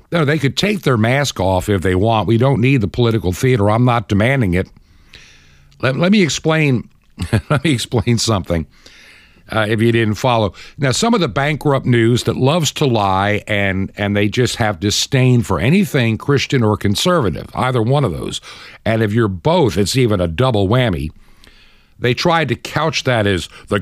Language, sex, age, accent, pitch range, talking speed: English, male, 60-79, American, 105-145 Hz, 185 wpm